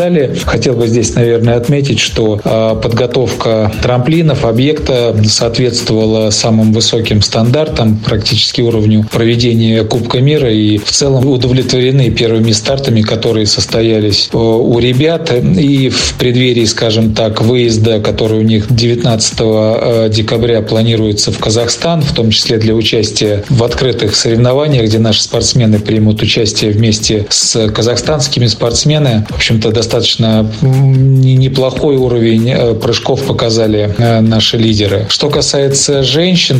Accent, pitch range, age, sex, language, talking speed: native, 110-130 Hz, 40-59, male, Russian, 115 wpm